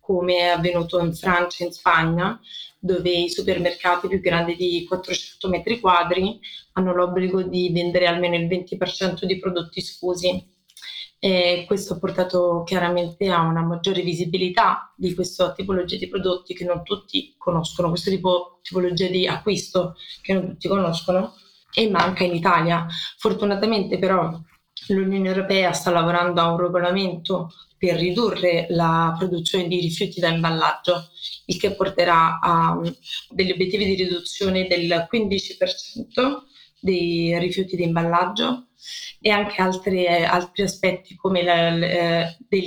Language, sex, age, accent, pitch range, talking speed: Italian, female, 20-39, native, 175-190 Hz, 135 wpm